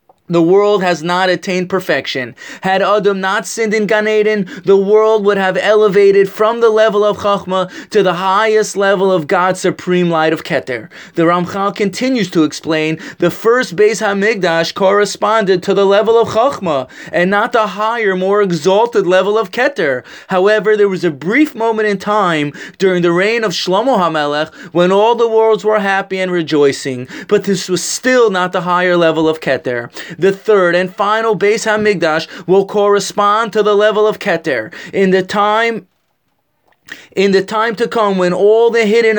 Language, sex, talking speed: English, male, 175 wpm